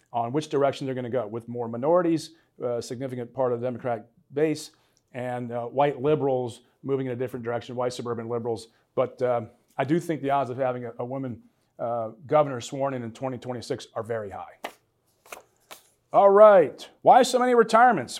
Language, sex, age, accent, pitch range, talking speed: English, male, 40-59, American, 130-185 Hz, 185 wpm